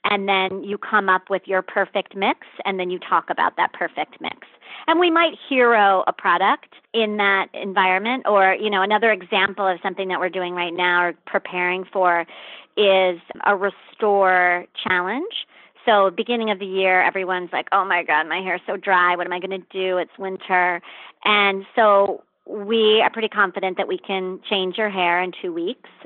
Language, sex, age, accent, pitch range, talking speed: English, male, 40-59, American, 180-205 Hz, 190 wpm